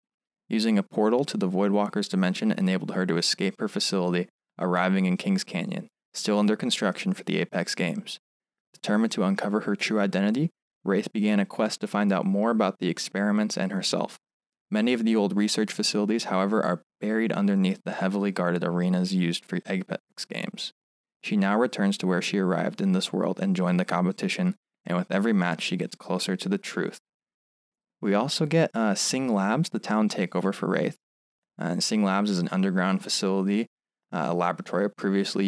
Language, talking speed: English, 185 wpm